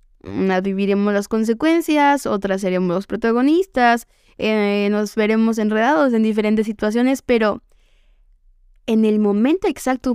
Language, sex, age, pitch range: Spanish, female, 20-39, 205-240 Hz